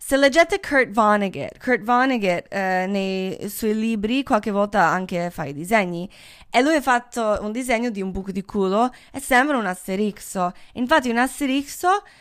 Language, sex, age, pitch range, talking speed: Italian, female, 20-39, 190-290 Hz, 165 wpm